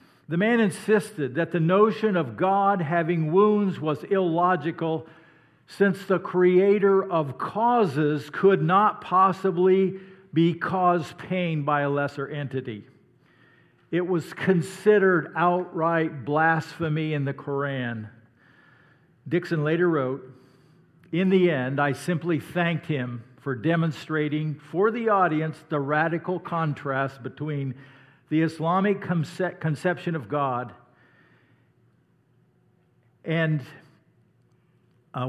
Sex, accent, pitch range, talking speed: male, American, 135-175 Hz, 105 wpm